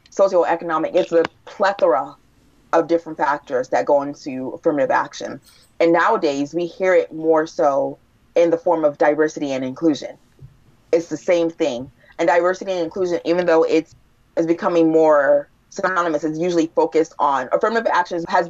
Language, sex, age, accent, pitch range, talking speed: English, female, 30-49, American, 155-180 Hz, 150 wpm